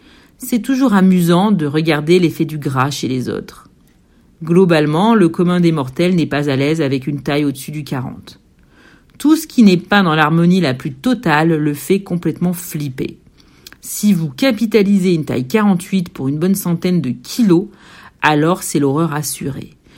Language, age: French, 50-69